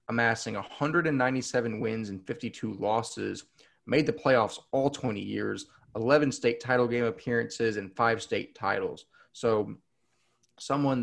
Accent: American